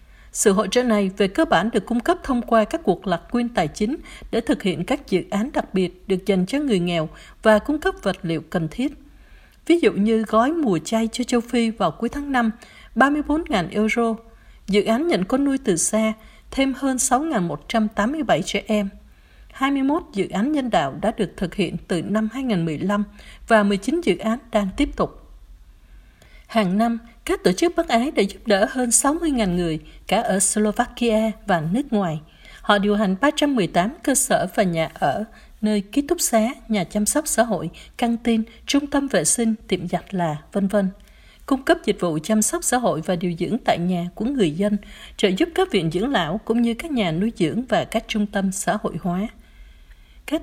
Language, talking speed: Vietnamese, 200 wpm